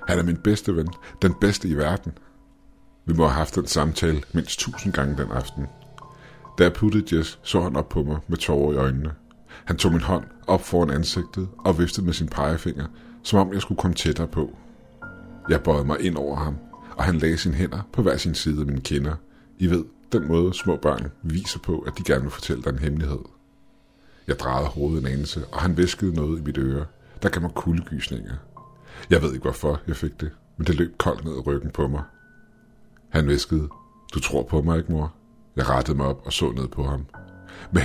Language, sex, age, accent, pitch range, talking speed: Danish, male, 60-79, native, 75-90 Hz, 215 wpm